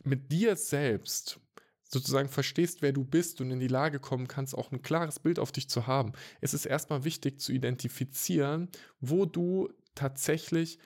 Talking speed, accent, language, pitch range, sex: 170 wpm, German, German, 120-150 Hz, male